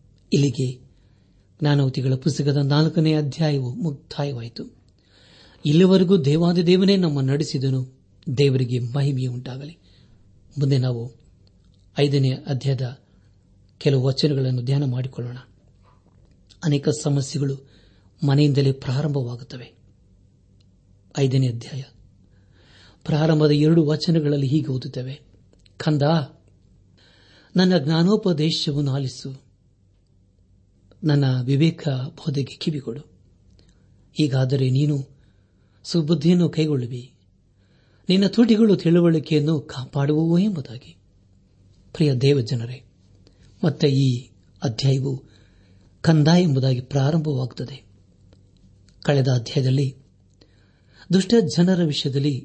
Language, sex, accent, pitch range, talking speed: Kannada, male, native, 100-150 Hz, 70 wpm